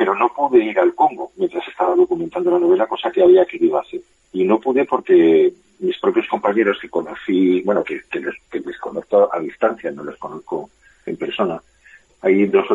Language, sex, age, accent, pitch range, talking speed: Spanish, male, 40-59, Spanish, 345-385 Hz, 200 wpm